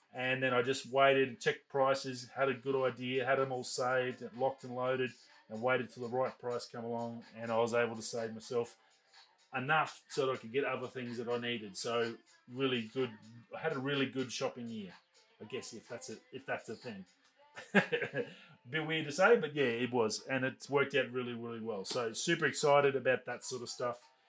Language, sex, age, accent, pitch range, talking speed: English, male, 30-49, Australian, 120-155 Hz, 215 wpm